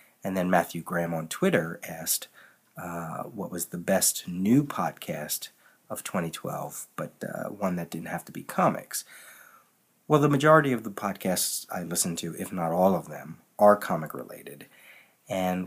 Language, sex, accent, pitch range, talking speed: English, male, American, 90-115 Hz, 160 wpm